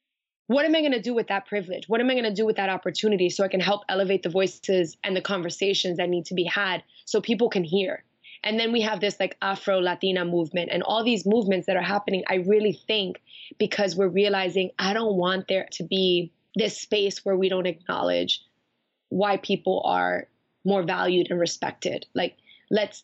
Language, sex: English, female